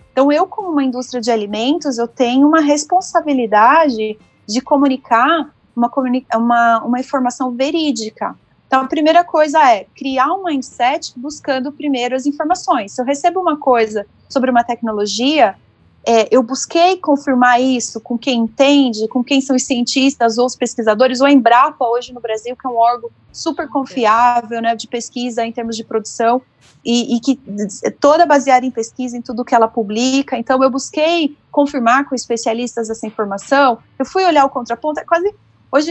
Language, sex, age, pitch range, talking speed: Portuguese, female, 30-49, 230-285 Hz, 170 wpm